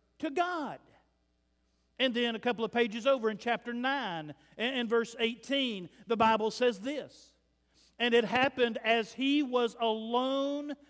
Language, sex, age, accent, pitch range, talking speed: English, male, 50-69, American, 210-260 Hz, 145 wpm